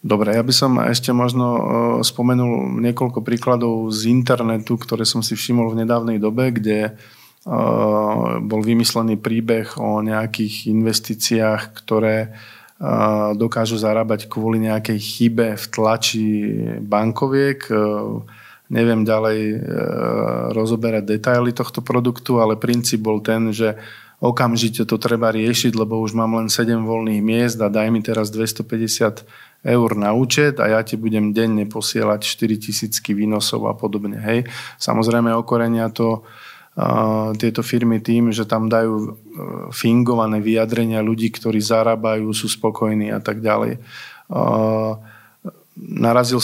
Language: Slovak